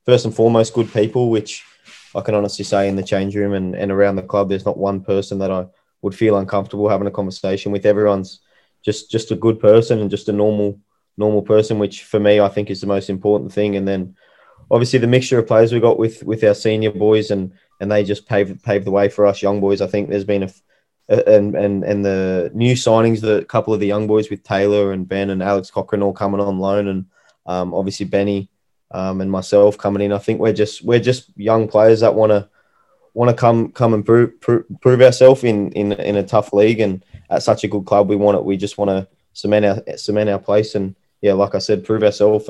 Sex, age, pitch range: male, 20-39, 100-110 Hz